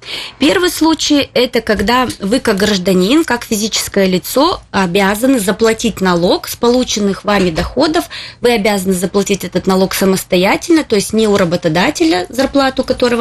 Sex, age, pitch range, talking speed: female, 20-39, 185-245 Hz, 135 wpm